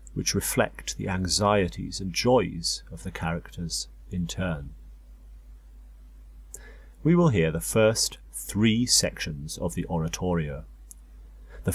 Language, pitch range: English, 80-105 Hz